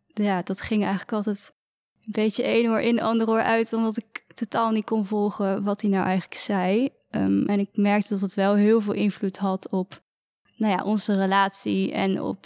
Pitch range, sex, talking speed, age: 195-225 Hz, female, 205 wpm, 20-39